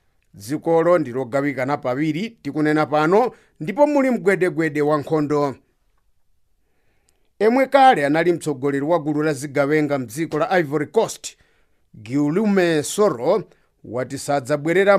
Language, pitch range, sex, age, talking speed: English, 140-190 Hz, male, 50-69, 110 wpm